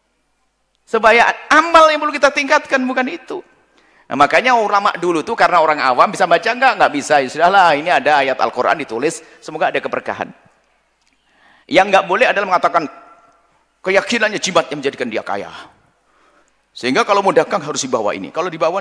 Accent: native